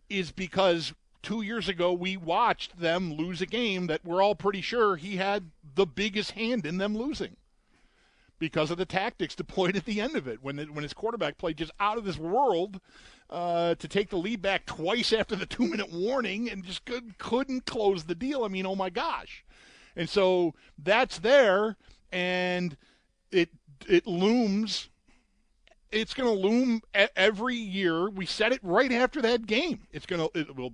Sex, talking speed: male, 185 wpm